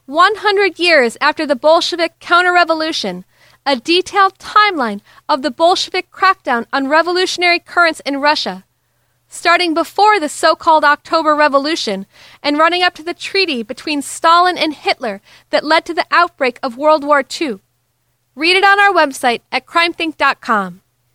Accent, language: American, English